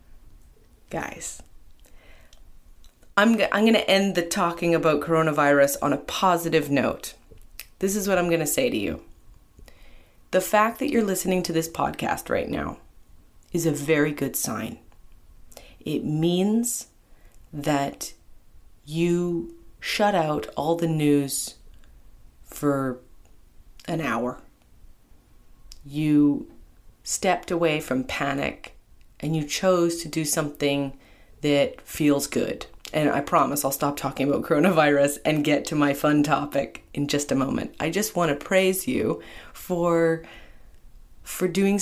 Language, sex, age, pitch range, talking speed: English, female, 30-49, 130-175 Hz, 130 wpm